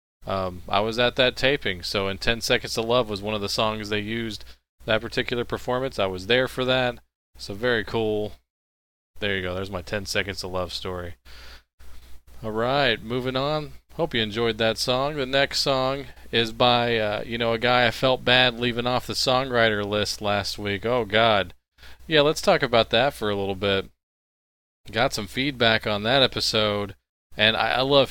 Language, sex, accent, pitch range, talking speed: English, male, American, 100-130 Hz, 190 wpm